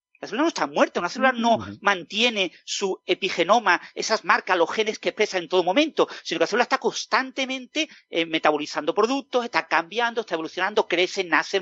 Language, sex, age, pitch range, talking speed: Spanish, male, 40-59, 165-245 Hz, 180 wpm